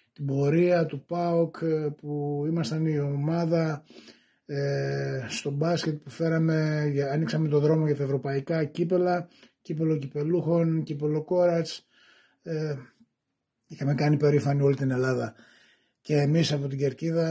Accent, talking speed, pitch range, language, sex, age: native, 125 wpm, 140-165 Hz, Greek, male, 20-39